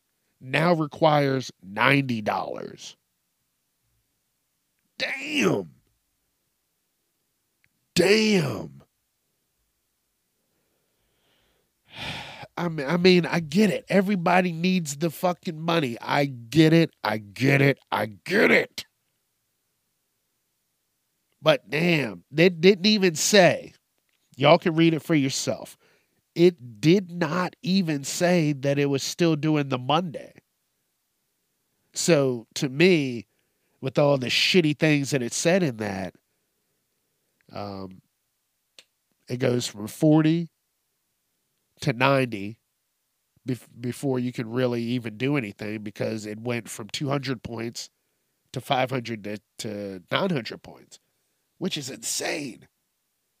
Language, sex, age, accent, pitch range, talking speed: English, male, 50-69, American, 120-170 Hz, 105 wpm